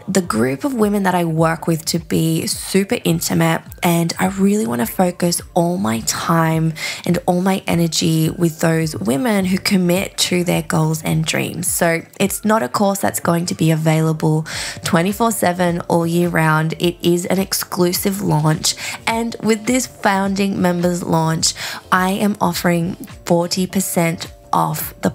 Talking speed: 160 wpm